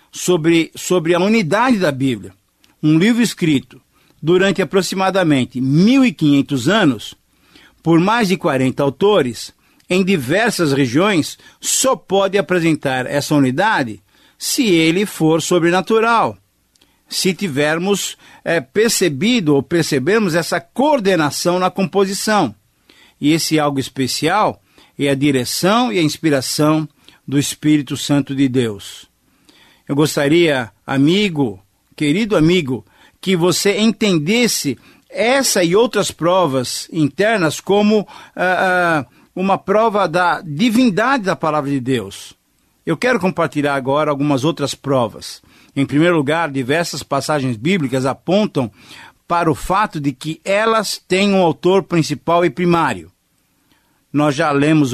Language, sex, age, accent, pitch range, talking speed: Portuguese, male, 50-69, Brazilian, 140-190 Hz, 115 wpm